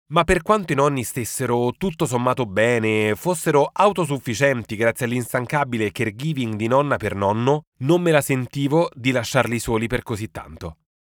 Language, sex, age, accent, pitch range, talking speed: Italian, male, 30-49, native, 110-150 Hz, 150 wpm